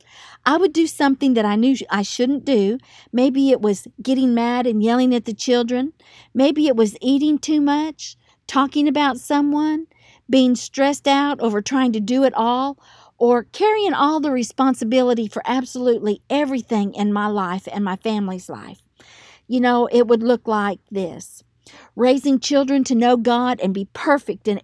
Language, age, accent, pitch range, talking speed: English, 50-69, American, 220-280 Hz, 170 wpm